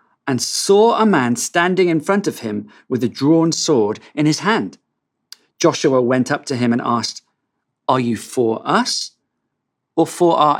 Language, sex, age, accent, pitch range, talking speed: English, male, 50-69, British, 120-155 Hz, 170 wpm